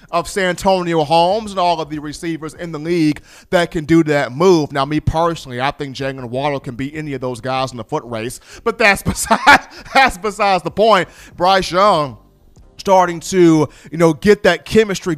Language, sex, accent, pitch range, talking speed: English, male, American, 155-215 Hz, 200 wpm